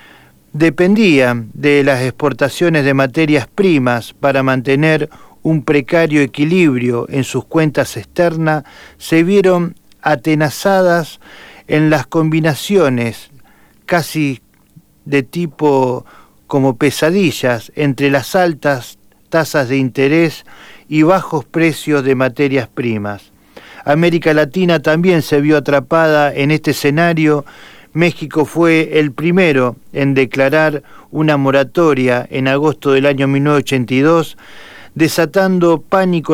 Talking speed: 105 wpm